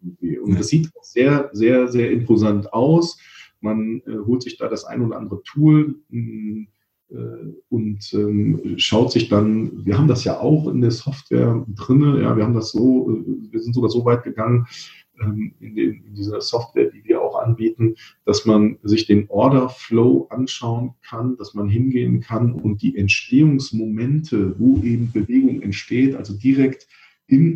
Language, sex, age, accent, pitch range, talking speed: German, male, 40-59, German, 105-130 Hz, 165 wpm